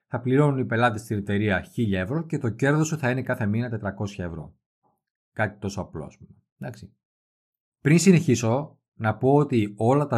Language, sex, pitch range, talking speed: Greek, male, 105-135 Hz, 165 wpm